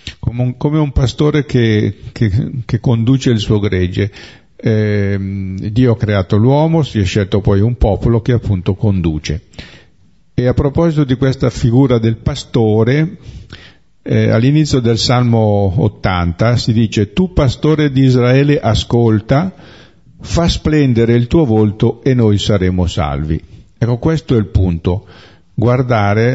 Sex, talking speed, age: male, 135 wpm, 50-69